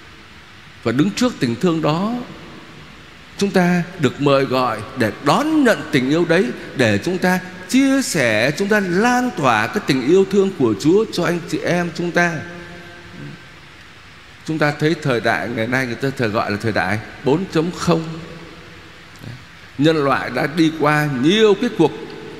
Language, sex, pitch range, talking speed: Vietnamese, male, 135-190 Hz, 160 wpm